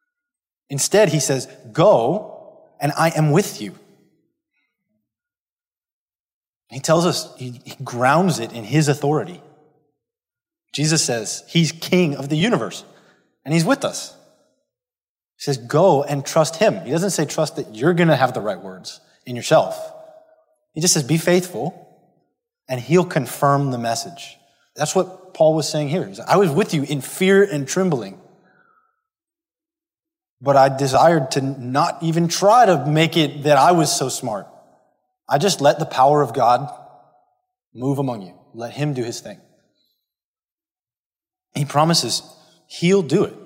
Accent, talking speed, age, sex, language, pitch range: American, 150 wpm, 20-39, male, English, 140-200 Hz